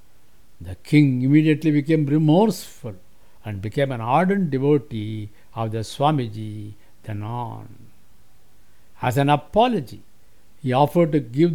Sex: male